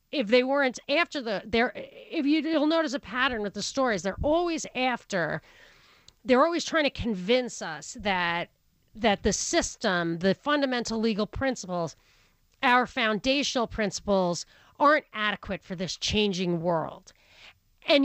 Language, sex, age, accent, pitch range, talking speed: English, female, 40-59, American, 205-285 Hz, 135 wpm